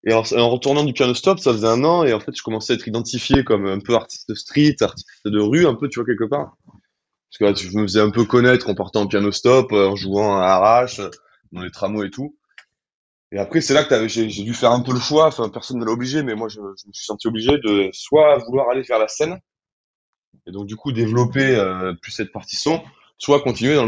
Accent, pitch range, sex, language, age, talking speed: French, 100-130 Hz, male, French, 20-39, 245 wpm